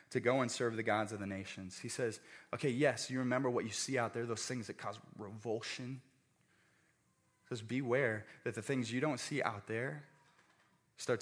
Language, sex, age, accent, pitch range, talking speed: English, male, 20-39, American, 130-190 Hz, 200 wpm